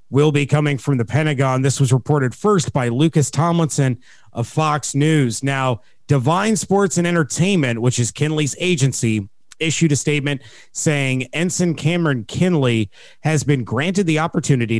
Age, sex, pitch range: 30-49, male, 120-150 Hz